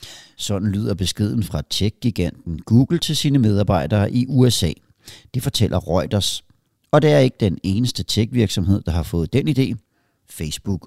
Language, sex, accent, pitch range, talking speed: Danish, male, native, 95-130 Hz, 155 wpm